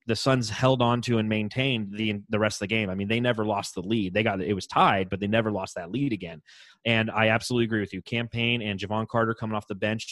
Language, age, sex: English, 30-49, male